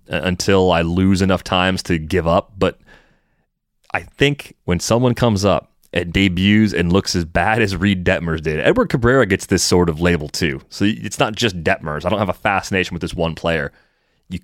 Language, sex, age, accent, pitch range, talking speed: English, male, 30-49, American, 90-110 Hz, 200 wpm